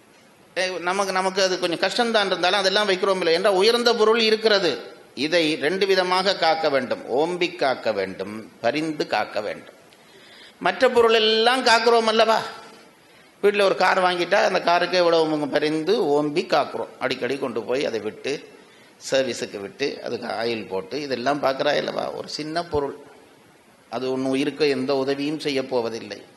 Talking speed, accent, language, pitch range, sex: 135 wpm, native, Tamil, 150-215 Hz, male